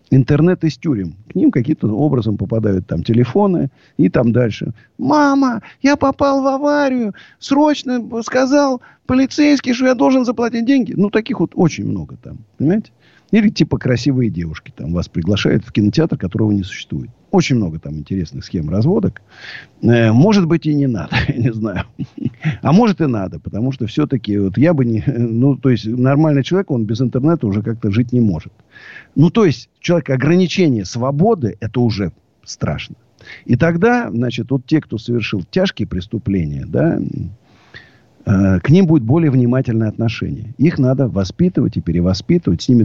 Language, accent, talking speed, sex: Russian, native, 160 wpm, male